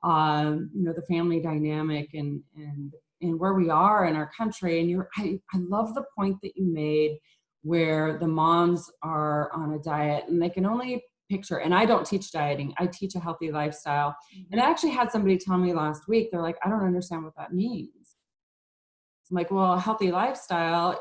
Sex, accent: female, American